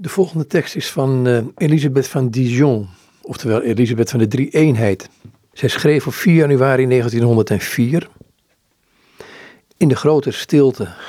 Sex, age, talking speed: male, 50-69, 130 wpm